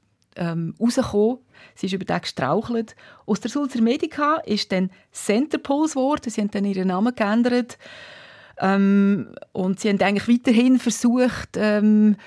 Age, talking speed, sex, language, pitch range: 30-49, 130 wpm, female, German, 185-240 Hz